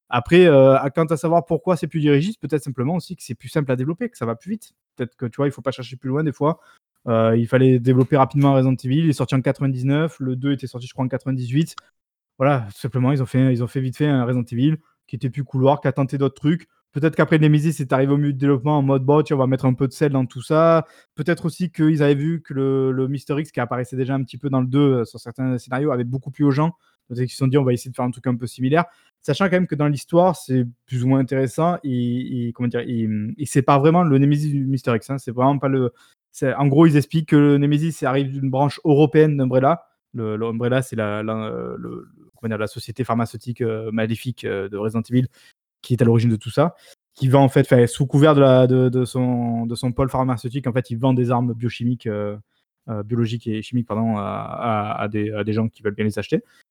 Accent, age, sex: French, 20-39, male